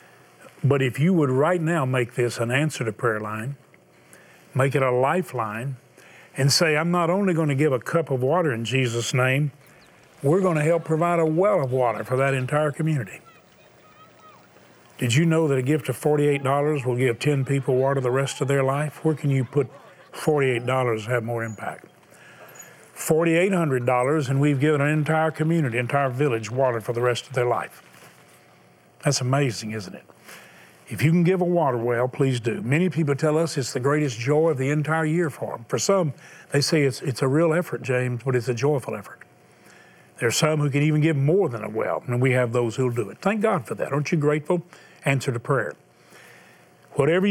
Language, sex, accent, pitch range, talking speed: English, male, American, 125-160 Hz, 205 wpm